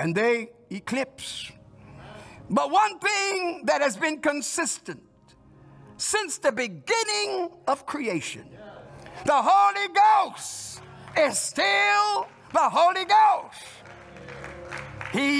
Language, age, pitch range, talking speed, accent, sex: English, 60-79, 230-335 Hz, 95 wpm, American, male